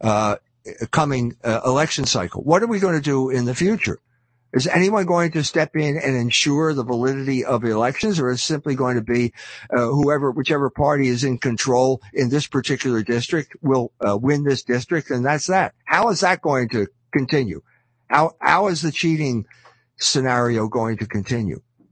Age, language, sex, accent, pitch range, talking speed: 60-79, English, male, American, 125-165 Hz, 185 wpm